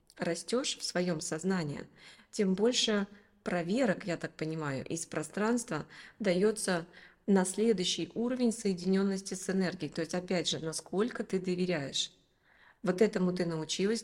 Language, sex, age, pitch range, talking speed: Russian, female, 20-39, 170-210 Hz, 130 wpm